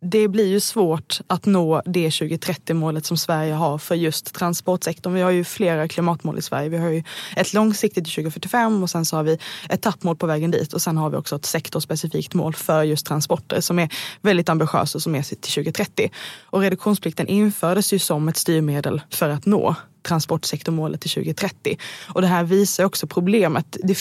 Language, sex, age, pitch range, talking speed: Swedish, female, 20-39, 155-185 Hz, 195 wpm